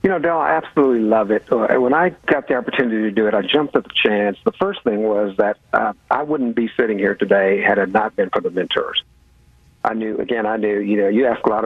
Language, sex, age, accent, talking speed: English, male, 50-69, American, 255 wpm